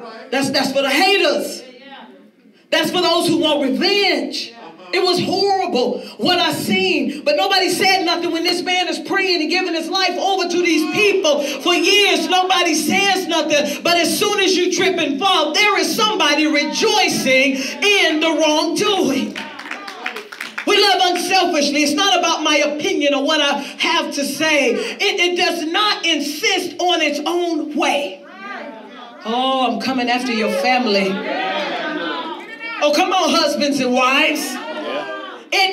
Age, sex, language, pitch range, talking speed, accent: 40-59, female, English, 290-360 Hz, 150 wpm, American